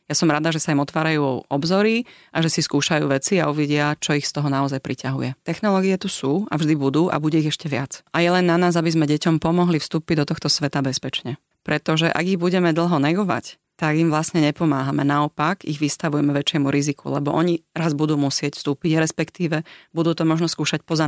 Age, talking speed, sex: 30-49, 210 wpm, female